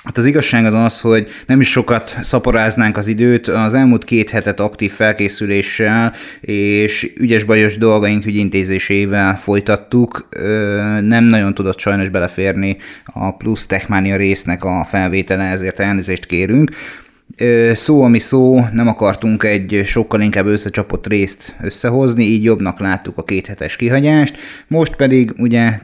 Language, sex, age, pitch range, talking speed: Hungarian, male, 30-49, 100-115 Hz, 135 wpm